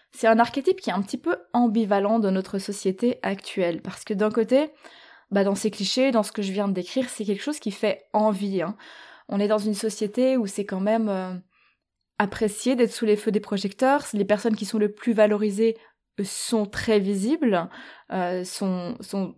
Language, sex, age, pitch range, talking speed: French, female, 20-39, 195-235 Hz, 200 wpm